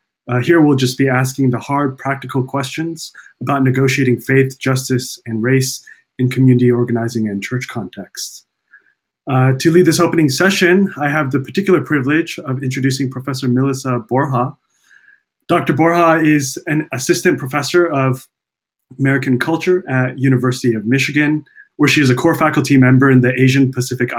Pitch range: 125-150 Hz